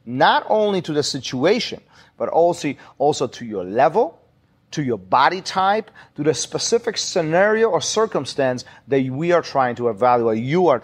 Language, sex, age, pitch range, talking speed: English, male, 40-59, 135-180 Hz, 160 wpm